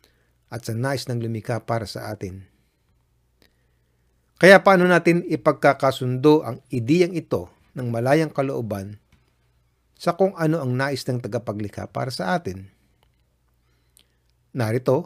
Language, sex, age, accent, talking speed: Filipino, male, 50-69, native, 115 wpm